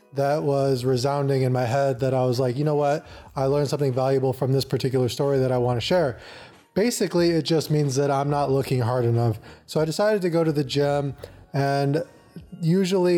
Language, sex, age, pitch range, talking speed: English, male, 20-39, 140-165 Hz, 205 wpm